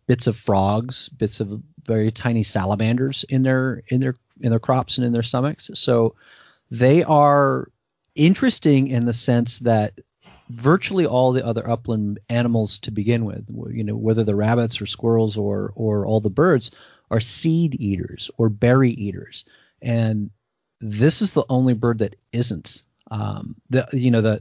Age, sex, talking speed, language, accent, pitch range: 30-49, male, 165 wpm, English, American, 110-130 Hz